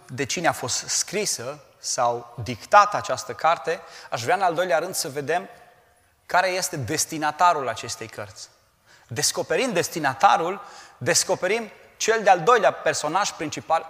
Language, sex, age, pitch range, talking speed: Romanian, male, 30-49, 130-190 Hz, 130 wpm